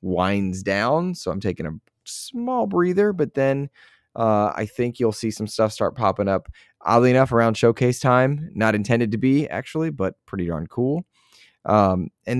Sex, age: male, 20-39